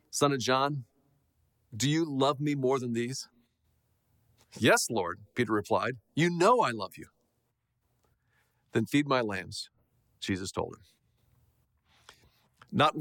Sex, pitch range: male, 125-170 Hz